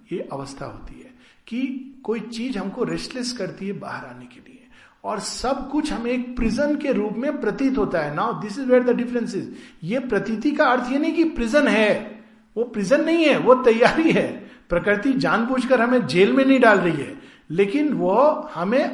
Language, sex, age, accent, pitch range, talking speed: Hindi, male, 50-69, native, 195-265 Hz, 150 wpm